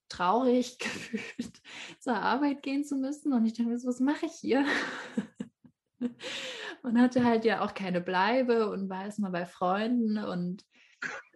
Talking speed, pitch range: 150 wpm, 185-245 Hz